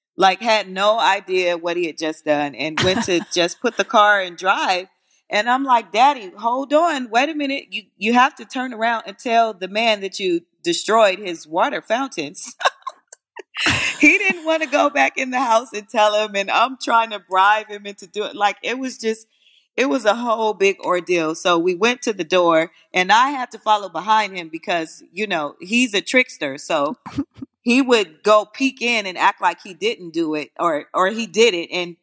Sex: female